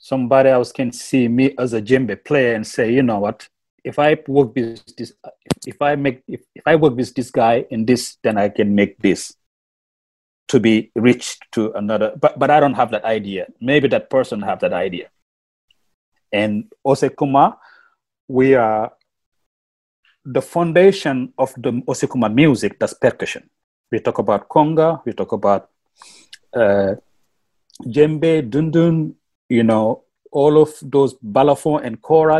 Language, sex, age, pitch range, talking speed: English, male, 40-59, 110-155 Hz, 155 wpm